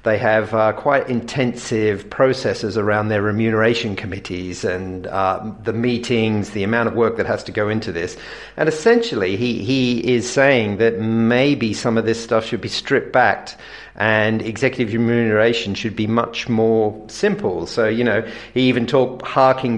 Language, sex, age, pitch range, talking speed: English, male, 50-69, 105-120 Hz, 165 wpm